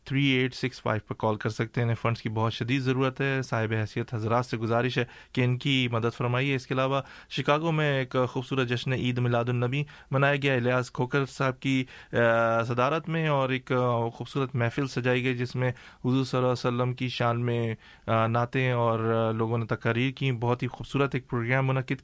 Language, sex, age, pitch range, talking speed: English, male, 30-49, 120-140 Hz, 190 wpm